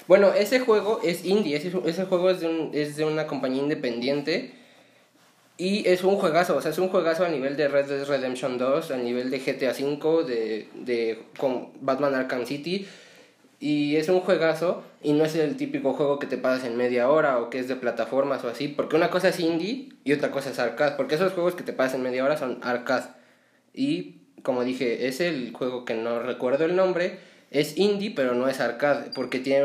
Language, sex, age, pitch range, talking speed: Spanish, male, 20-39, 130-165 Hz, 210 wpm